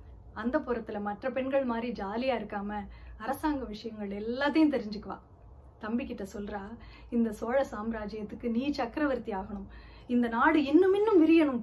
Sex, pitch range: female, 210-270 Hz